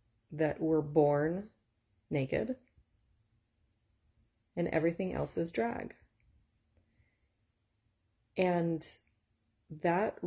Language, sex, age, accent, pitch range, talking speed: English, female, 30-49, American, 110-160 Hz, 65 wpm